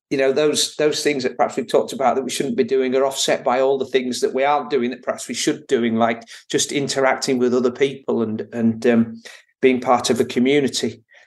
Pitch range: 115-140 Hz